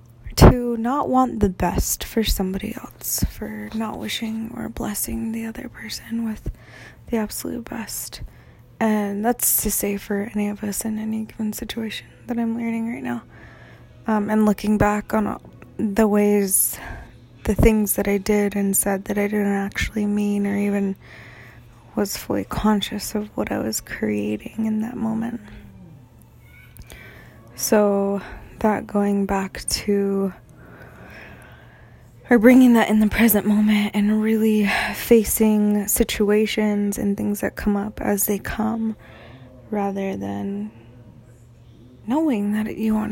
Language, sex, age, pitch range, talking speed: English, female, 20-39, 195-225 Hz, 140 wpm